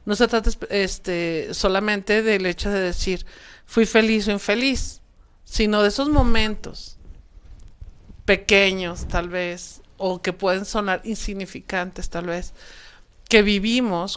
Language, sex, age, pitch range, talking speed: Spanish, male, 50-69, 185-225 Hz, 120 wpm